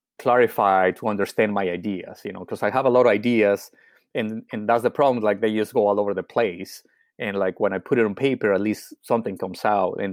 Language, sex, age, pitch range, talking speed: English, male, 30-49, 95-115 Hz, 245 wpm